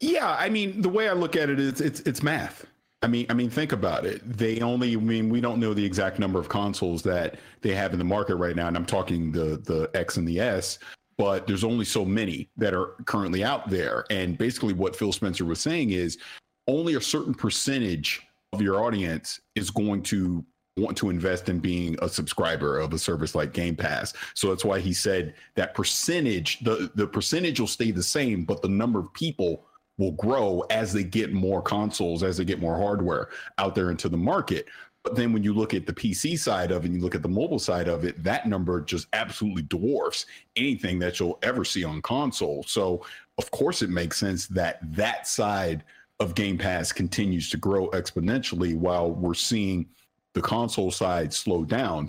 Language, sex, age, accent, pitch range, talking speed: English, male, 50-69, American, 90-110 Hz, 210 wpm